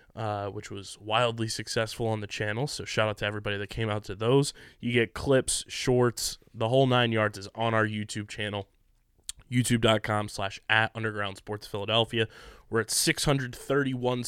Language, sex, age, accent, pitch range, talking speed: English, male, 20-39, American, 110-125 Hz, 155 wpm